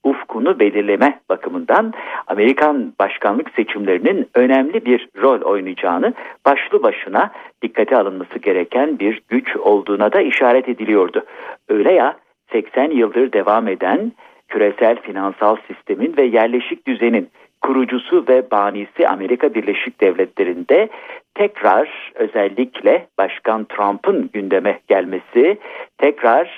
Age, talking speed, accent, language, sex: 60-79, 105 wpm, native, Turkish, male